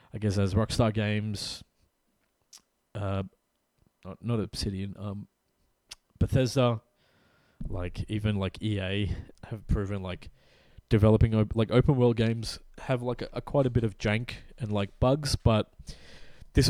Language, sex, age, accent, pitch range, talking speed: English, male, 20-39, Australian, 100-130 Hz, 135 wpm